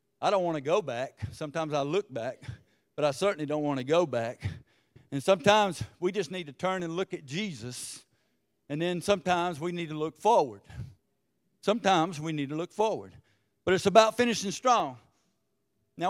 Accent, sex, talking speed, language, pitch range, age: American, male, 185 wpm, English, 165-245 Hz, 50-69